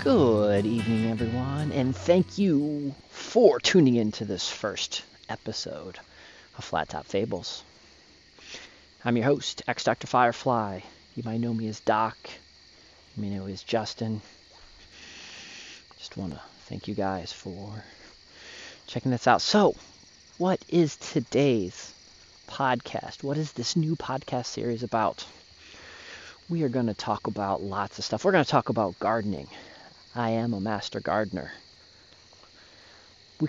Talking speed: 140 wpm